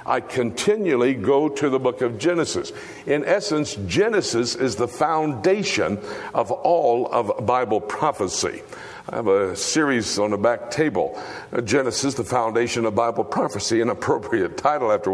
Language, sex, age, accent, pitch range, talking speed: English, male, 60-79, American, 130-190 Hz, 145 wpm